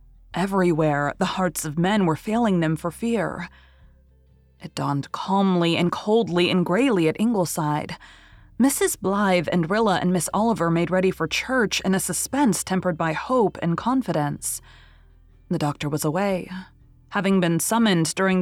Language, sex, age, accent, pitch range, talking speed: English, female, 20-39, American, 150-190 Hz, 150 wpm